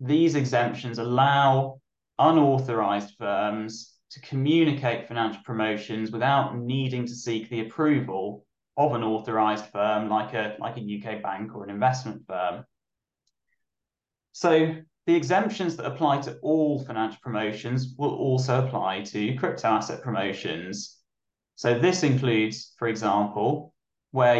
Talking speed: 125 wpm